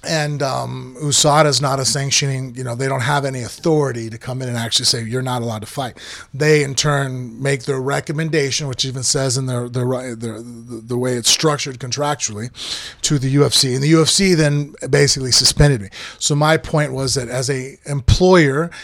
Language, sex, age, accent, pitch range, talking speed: English, male, 30-49, American, 125-150 Hz, 195 wpm